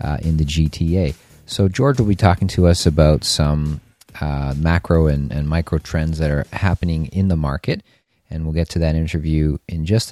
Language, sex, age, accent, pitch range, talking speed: English, male, 40-59, American, 80-95 Hz, 195 wpm